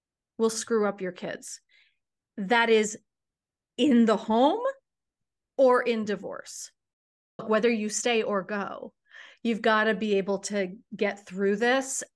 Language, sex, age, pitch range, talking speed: English, female, 30-49, 205-255 Hz, 135 wpm